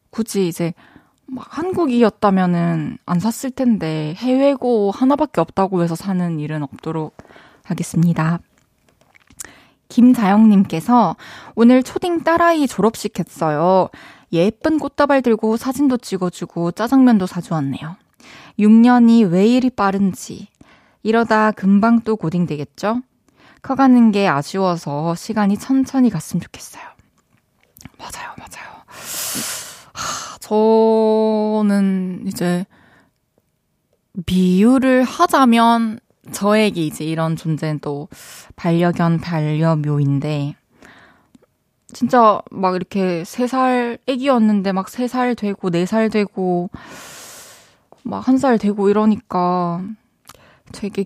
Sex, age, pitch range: female, 20-39, 175-245 Hz